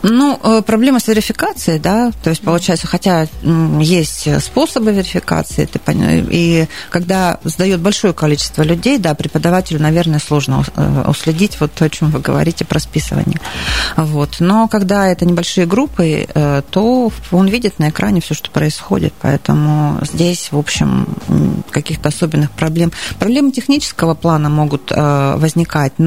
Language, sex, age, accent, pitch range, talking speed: Russian, female, 30-49, native, 145-180 Hz, 135 wpm